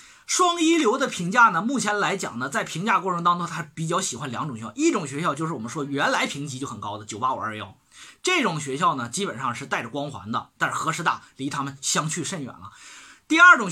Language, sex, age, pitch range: Chinese, male, 20-39, 135-220 Hz